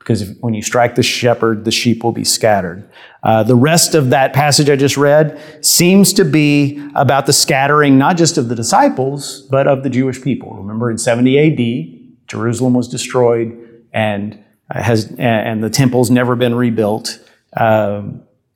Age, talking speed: 40-59, 165 wpm